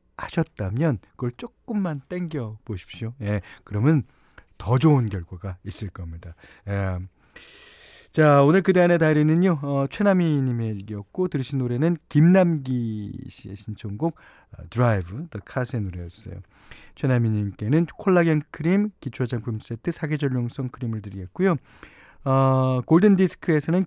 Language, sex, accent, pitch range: Korean, male, native, 105-160 Hz